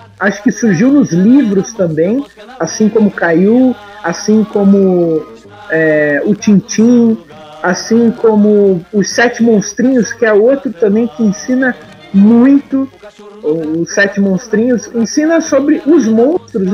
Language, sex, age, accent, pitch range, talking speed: Portuguese, male, 50-69, Brazilian, 195-255 Hz, 115 wpm